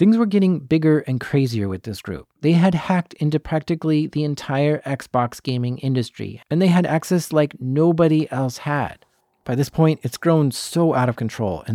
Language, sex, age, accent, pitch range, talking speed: English, male, 30-49, American, 115-155 Hz, 190 wpm